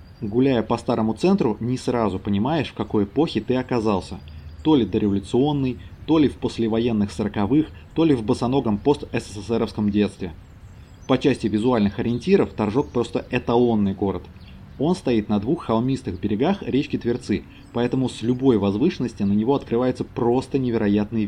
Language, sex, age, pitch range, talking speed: Russian, male, 30-49, 105-135 Hz, 145 wpm